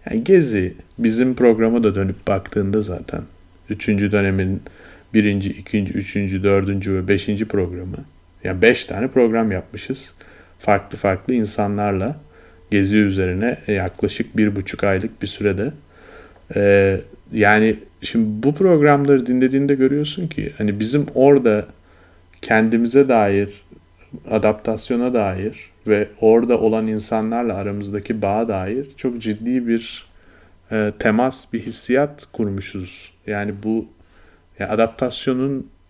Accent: native